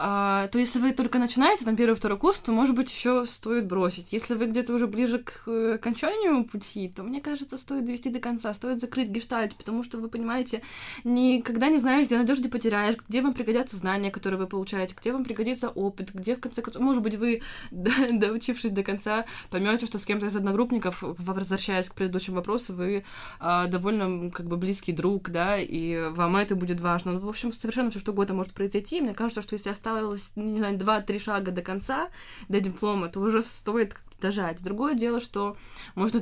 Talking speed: 200 wpm